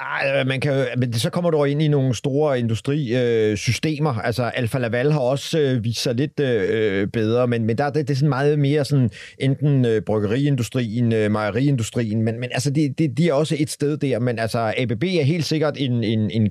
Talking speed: 215 wpm